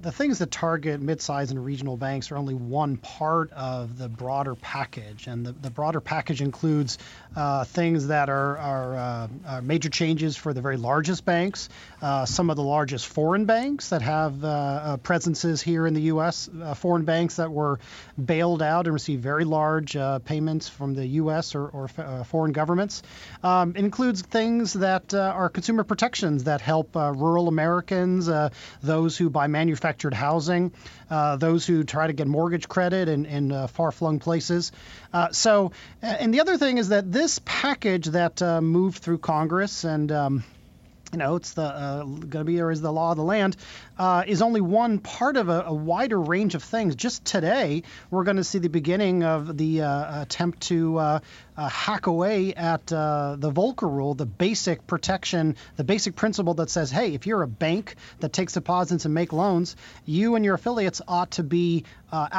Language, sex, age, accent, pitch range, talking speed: English, male, 30-49, American, 150-180 Hz, 190 wpm